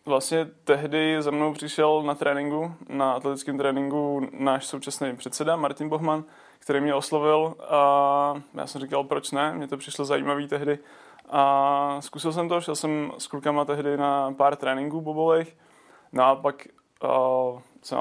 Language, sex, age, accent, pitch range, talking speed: Czech, male, 20-39, native, 140-150 Hz, 150 wpm